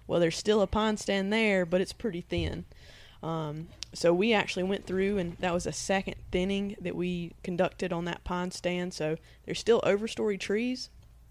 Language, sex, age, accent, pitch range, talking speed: English, female, 20-39, American, 165-195 Hz, 185 wpm